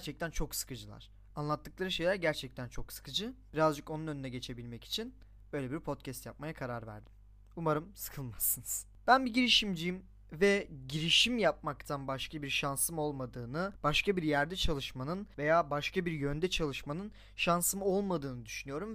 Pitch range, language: 130-190 Hz, Turkish